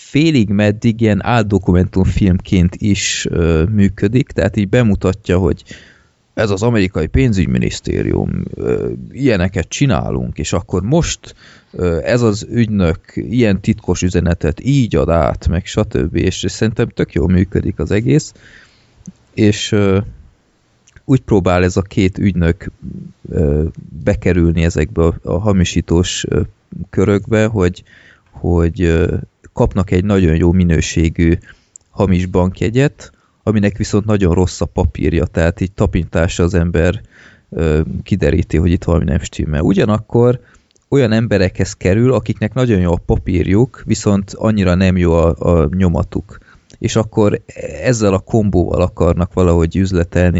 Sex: male